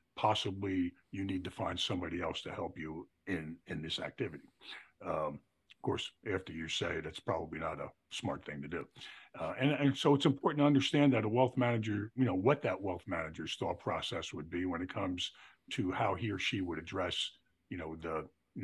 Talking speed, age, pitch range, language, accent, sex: 210 wpm, 50-69, 90-130 Hz, English, American, male